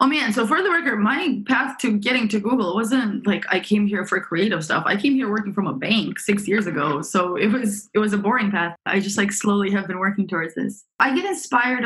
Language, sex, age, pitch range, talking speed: English, female, 20-39, 185-225 Hz, 255 wpm